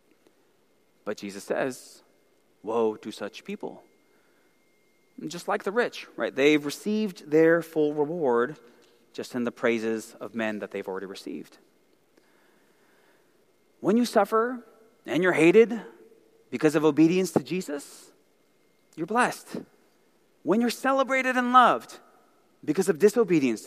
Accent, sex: American, male